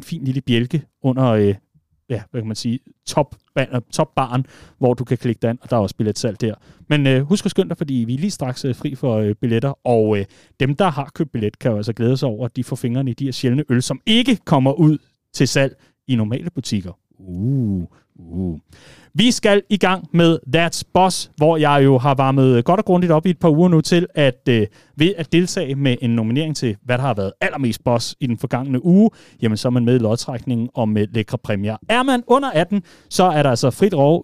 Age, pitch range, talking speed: 30-49, 125-175 Hz, 235 wpm